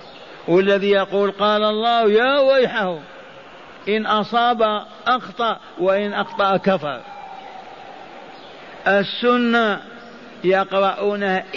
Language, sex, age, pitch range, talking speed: Arabic, male, 50-69, 180-220 Hz, 75 wpm